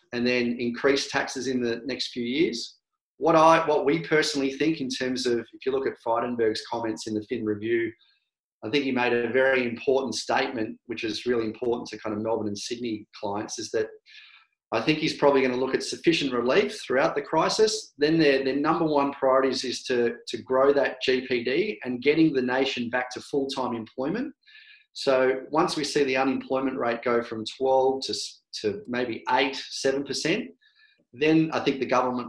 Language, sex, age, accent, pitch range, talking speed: English, male, 30-49, Australian, 120-150 Hz, 190 wpm